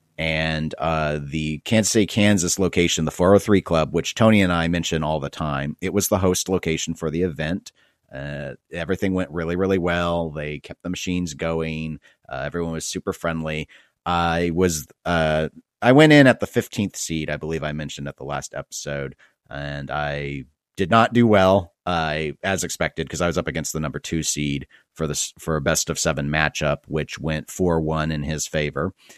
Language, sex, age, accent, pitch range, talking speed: English, male, 40-59, American, 75-95 Hz, 185 wpm